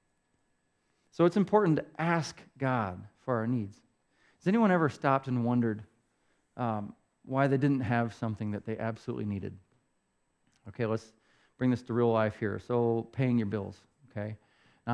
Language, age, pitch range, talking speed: English, 40-59, 110-135 Hz, 155 wpm